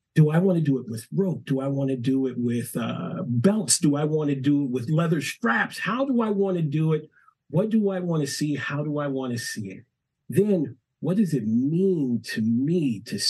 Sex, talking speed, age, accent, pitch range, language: male, 245 wpm, 50-69, American, 130-165 Hz, English